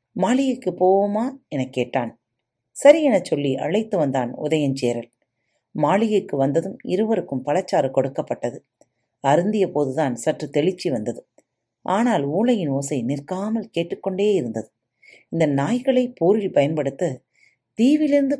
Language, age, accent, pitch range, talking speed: Tamil, 40-59, native, 130-210 Hz, 100 wpm